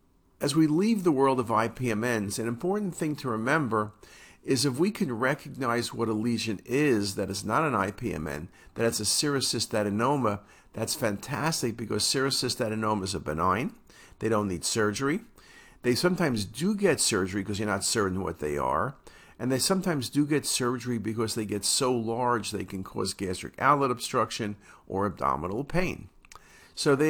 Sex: male